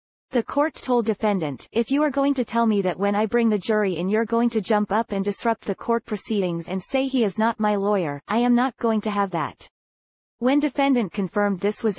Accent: American